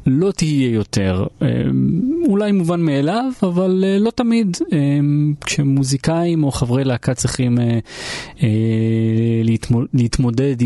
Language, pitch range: Hebrew, 115-155 Hz